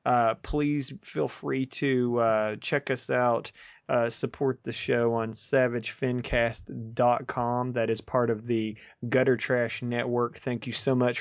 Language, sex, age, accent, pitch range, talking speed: English, male, 30-49, American, 115-130 Hz, 145 wpm